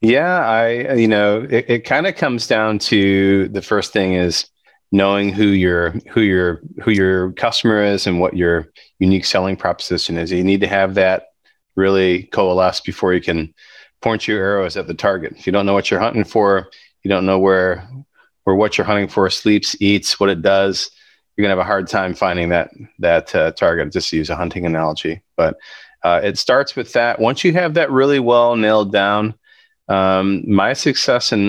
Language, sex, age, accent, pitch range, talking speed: English, male, 30-49, American, 90-110 Hz, 200 wpm